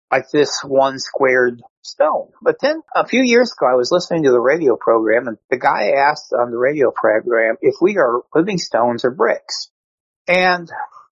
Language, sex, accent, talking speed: English, male, American, 185 wpm